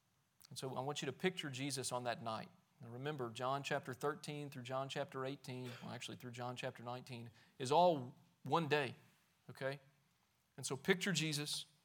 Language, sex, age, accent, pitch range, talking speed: English, male, 40-59, American, 130-165 Hz, 175 wpm